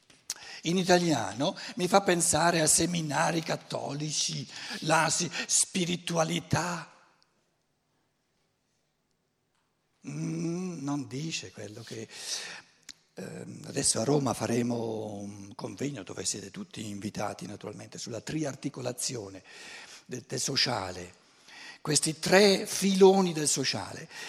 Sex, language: male, Italian